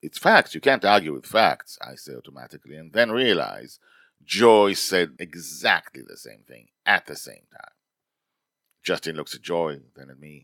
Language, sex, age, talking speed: English, male, 40-59, 170 wpm